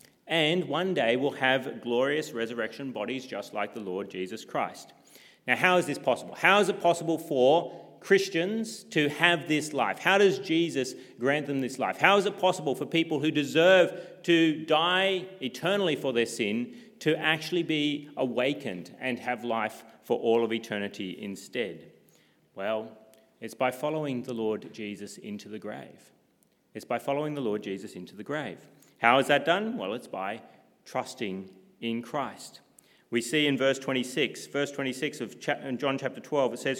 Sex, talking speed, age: male, 170 wpm, 30-49